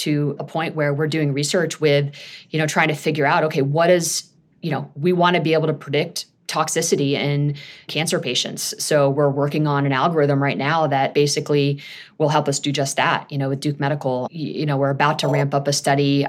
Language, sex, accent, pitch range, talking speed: English, female, American, 140-155 Hz, 220 wpm